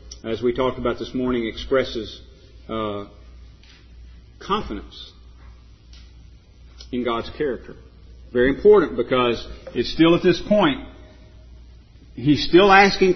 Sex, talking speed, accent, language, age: male, 105 wpm, American, English, 50-69